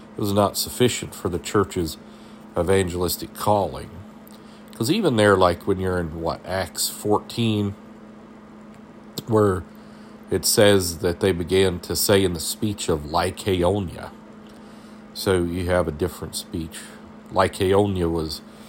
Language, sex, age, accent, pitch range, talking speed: English, male, 50-69, American, 85-105 Hz, 125 wpm